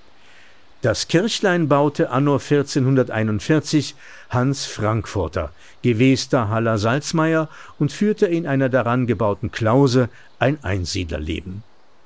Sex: male